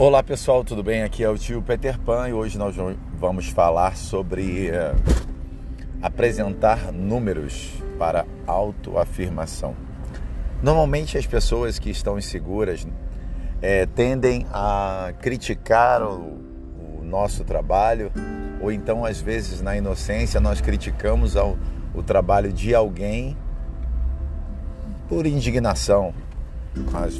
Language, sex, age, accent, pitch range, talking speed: Portuguese, male, 50-69, Brazilian, 75-105 Hz, 110 wpm